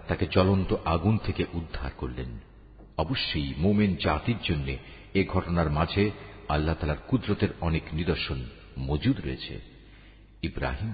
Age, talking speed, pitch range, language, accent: 50-69, 115 wpm, 85-115 Hz, Bengali, native